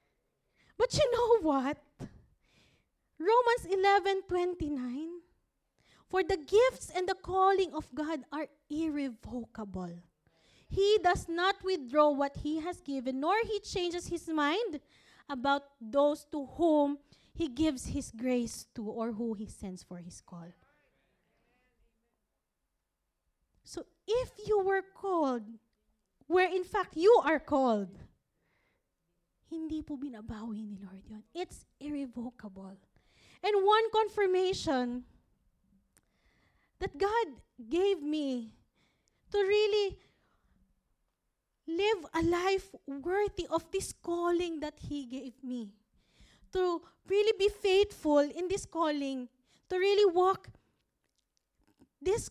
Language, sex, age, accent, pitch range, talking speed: English, female, 20-39, Filipino, 260-380 Hz, 110 wpm